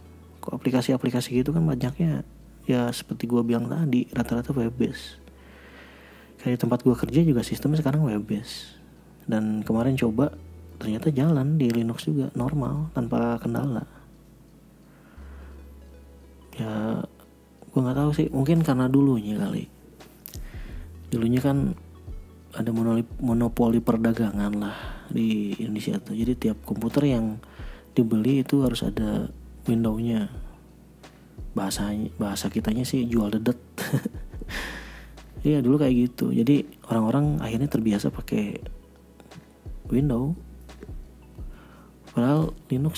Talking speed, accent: 105 wpm, native